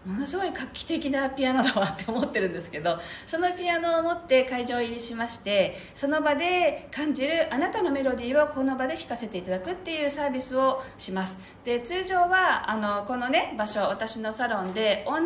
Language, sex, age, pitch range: Japanese, female, 40-59, 185-290 Hz